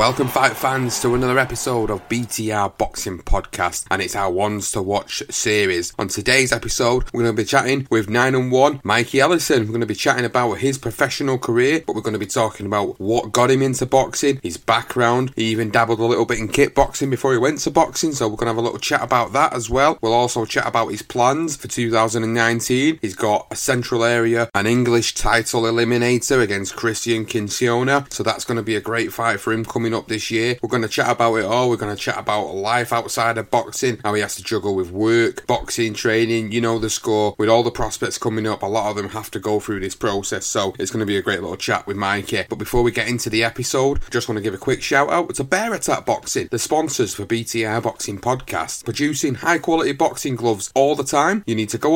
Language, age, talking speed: English, 30-49, 240 wpm